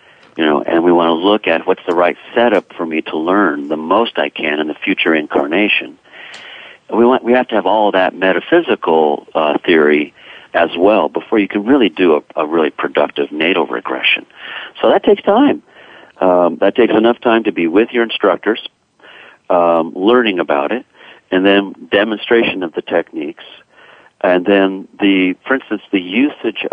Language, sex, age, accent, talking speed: English, male, 50-69, American, 180 wpm